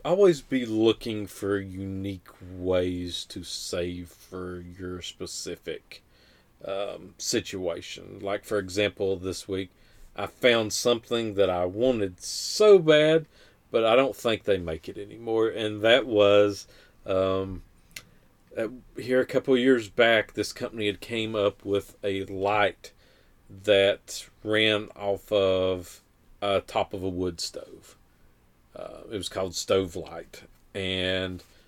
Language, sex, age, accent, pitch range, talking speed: English, male, 40-59, American, 95-110 Hz, 130 wpm